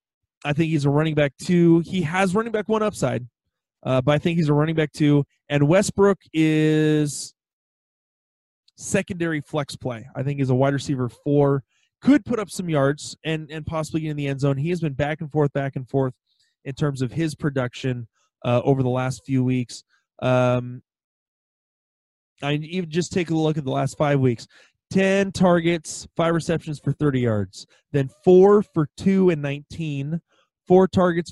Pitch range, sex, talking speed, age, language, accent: 135-165 Hz, male, 180 wpm, 20-39, English, American